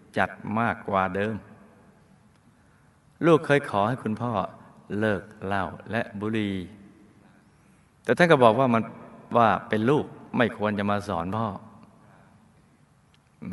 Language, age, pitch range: Thai, 20-39, 95-115 Hz